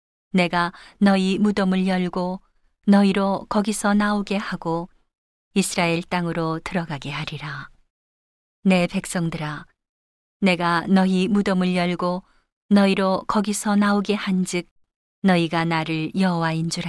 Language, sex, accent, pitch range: Korean, female, native, 165-195 Hz